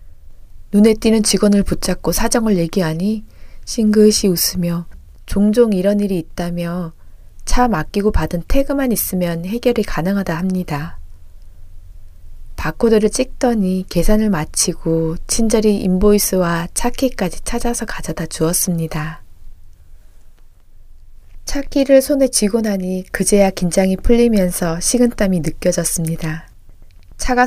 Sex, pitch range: female, 160-215 Hz